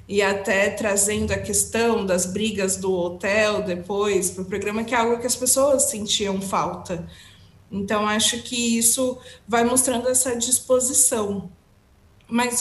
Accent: Brazilian